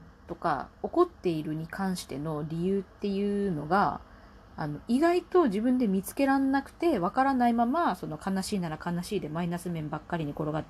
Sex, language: female, Japanese